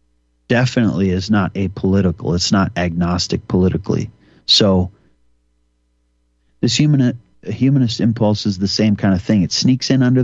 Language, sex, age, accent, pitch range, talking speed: English, male, 40-59, American, 95-120 Hz, 145 wpm